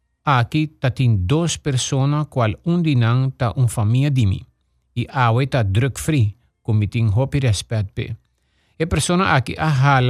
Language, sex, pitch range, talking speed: English, male, 110-140 Hz, 145 wpm